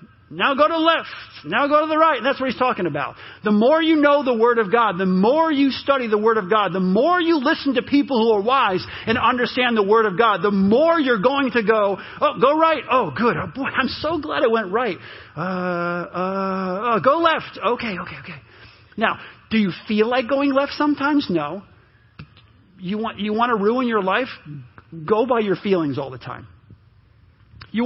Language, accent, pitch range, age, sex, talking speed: English, American, 175-255 Hz, 40-59, male, 210 wpm